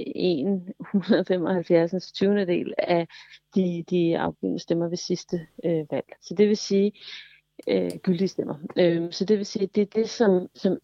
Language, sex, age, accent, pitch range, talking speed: Danish, female, 40-59, native, 165-200 Hz, 160 wpm